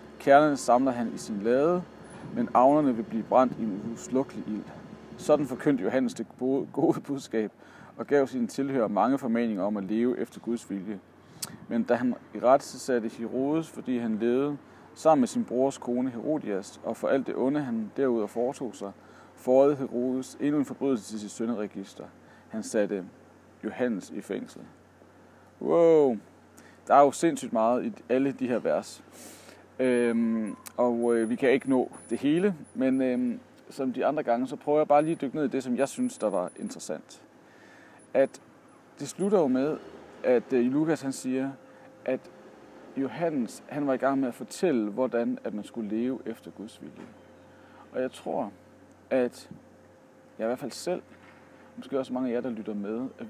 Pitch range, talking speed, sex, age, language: 115-145 Hz, 180 wpm, male, 40-59, Danish